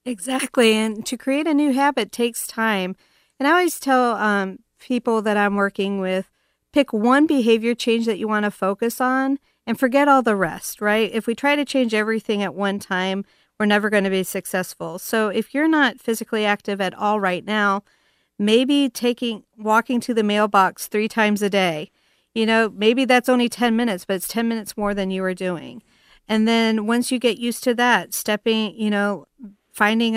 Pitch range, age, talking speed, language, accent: 200-230 Hz, 40-59, 195 wpm, English, American